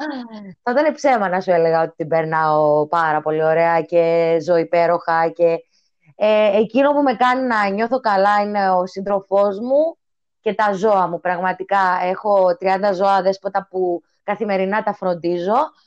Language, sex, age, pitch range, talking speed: Greek, female, 20-39, 190-250 Hz, 155 wpm